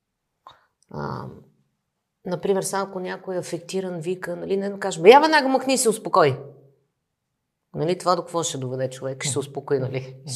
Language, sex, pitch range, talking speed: Bulgarian, female, 150-200 Hz, 170 wpm